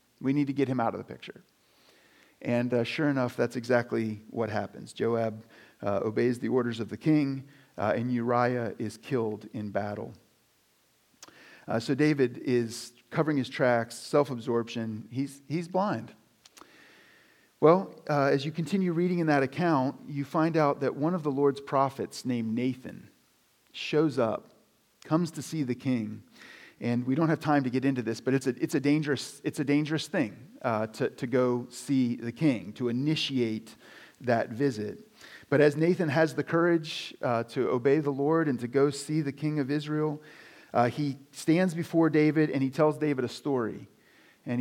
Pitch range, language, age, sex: 120-160 Hz, English, 40-59, male